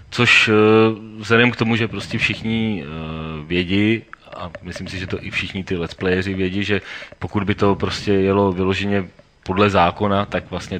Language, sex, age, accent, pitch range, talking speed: Czech, male, 30-49, native, 95-110 Hz, 170 wpm